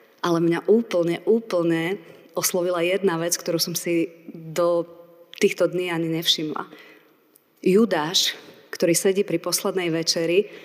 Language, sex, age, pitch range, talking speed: Slovak, female, 30-49, 170-210 Hz, 120 wpm